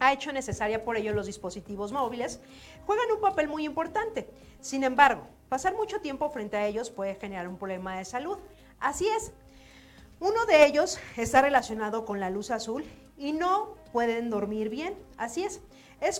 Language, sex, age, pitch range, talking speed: Spanish, female, 40-59, 220-310 Hz, 170 wpm